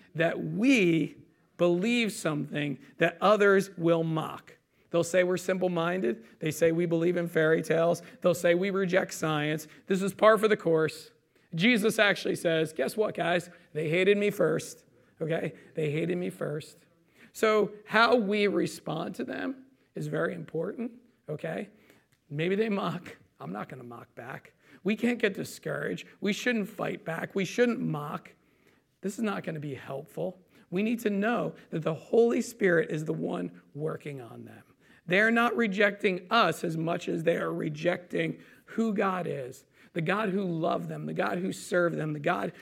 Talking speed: 170 wpm